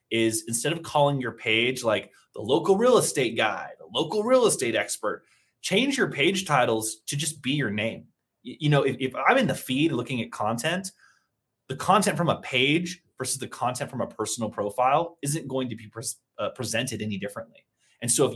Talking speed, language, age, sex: 195 wpm, English, 20-39, male